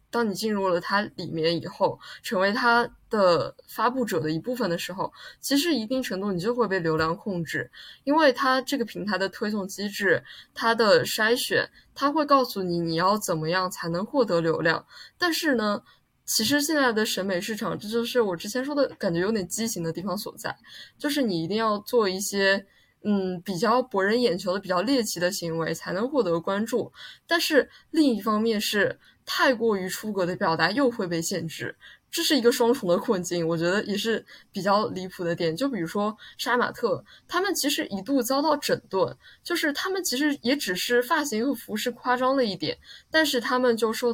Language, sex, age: Chinese, female, 20-39